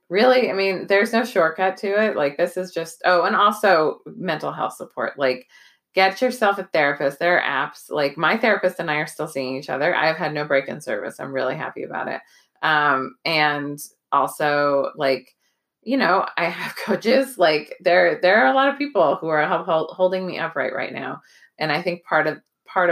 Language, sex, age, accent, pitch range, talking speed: English, female, 20-39, American, 150-210 Hz, 205 wpm